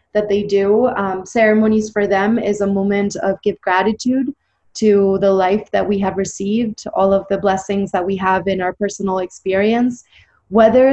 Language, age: English, 20-39